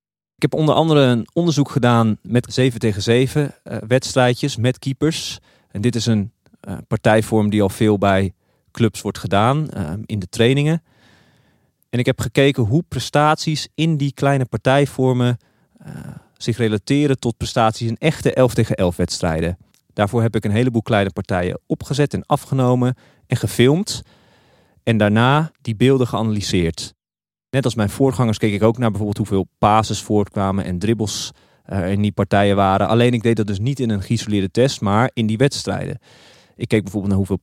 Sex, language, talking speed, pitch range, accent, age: male, Dutch, 175 wpm, 100-130 Hz, Dutch, 40-59